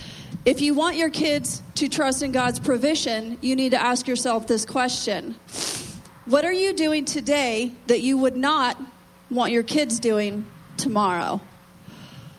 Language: English